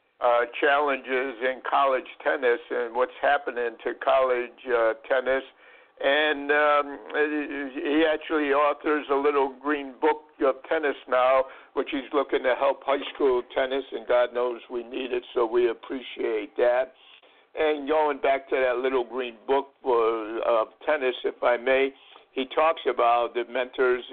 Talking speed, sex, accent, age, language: 150 wpm, male, American, 60-79, English